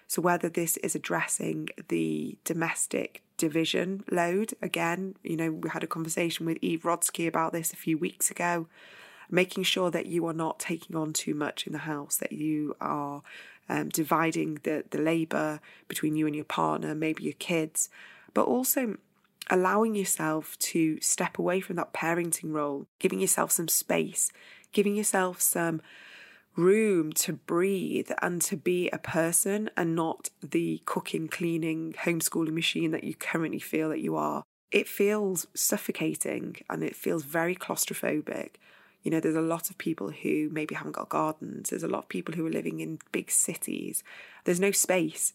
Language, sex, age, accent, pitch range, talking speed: English, female, 20-39, British, 155-185 Hz, 170 wpm